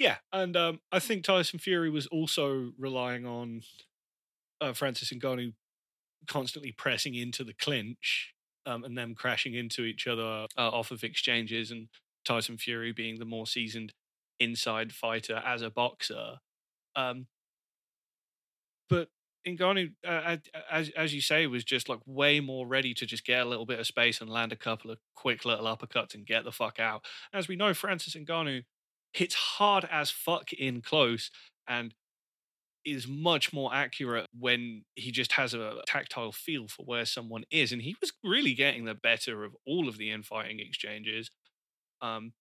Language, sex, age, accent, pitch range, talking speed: English, male, 20-39, British, 115-150 Hz, 165 wpm